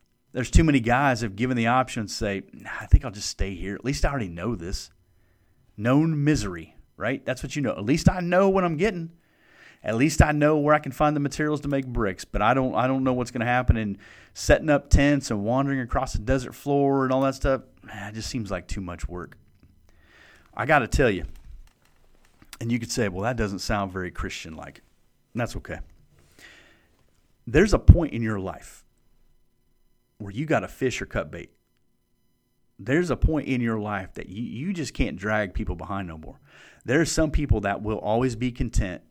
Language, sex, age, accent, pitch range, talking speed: English, male, 40-59, American, 100-140 Hz, 215 wpm